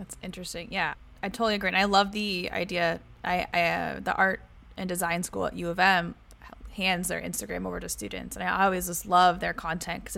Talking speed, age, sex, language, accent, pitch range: 220 wpm, 20-39, female, English, American, 175-200 Hz